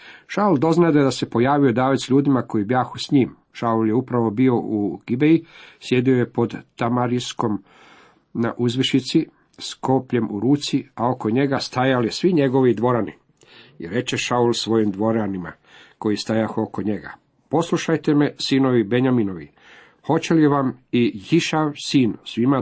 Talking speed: 150 wpm